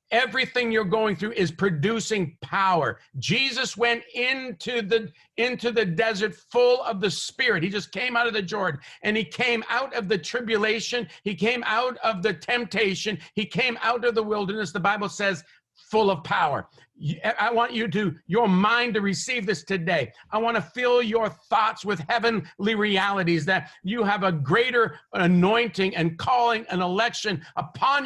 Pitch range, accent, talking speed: 190-245 Hz, American, 170 wpm